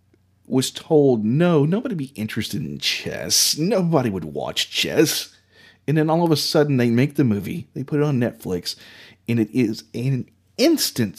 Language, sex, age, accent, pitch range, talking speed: English, male, 30-49, American, 100-145 Hz, 175 wpm